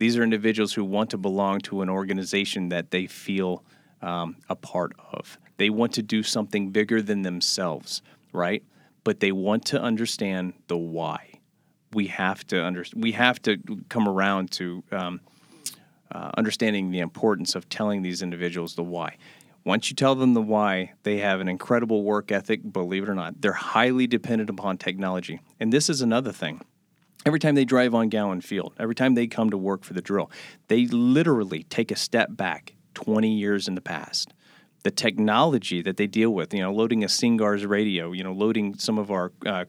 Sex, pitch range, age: male, 95-115 Hz, 40-59